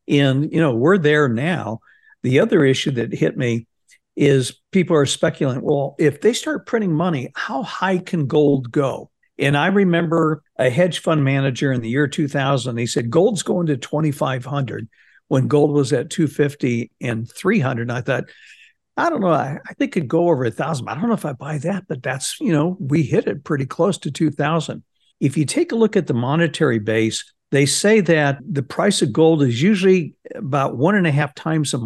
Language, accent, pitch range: English, American, 135-165 Hz